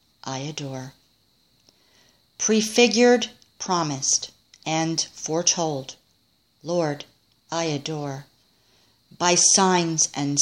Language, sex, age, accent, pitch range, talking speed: English, female, 50-69, American, 135-170 Hz, 70 wpm